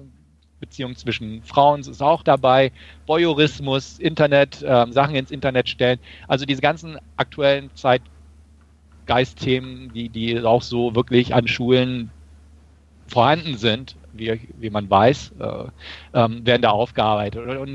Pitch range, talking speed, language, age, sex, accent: 110-140 Hz, 125 wpm, German, 40-59, male, German